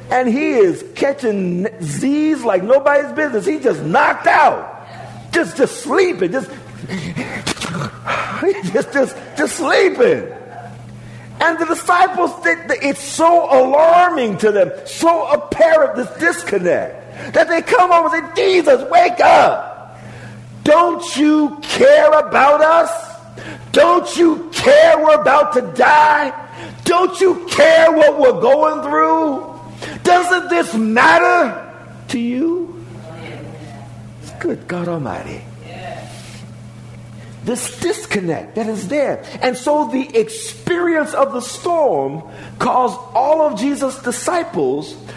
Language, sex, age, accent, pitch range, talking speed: English, male, 50-69, American, 200-330 Hz, 115 wpm